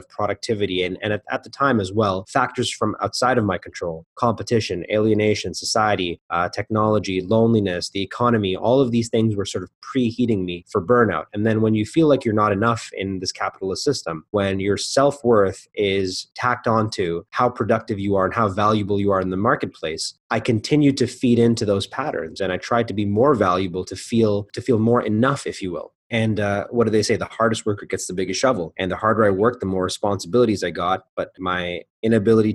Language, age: English, 30-49